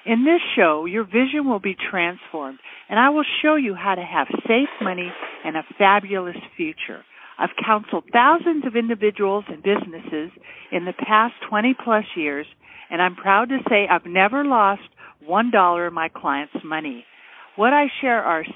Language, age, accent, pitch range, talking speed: English, 50-69, American, 180-260 Hz, 170 wpm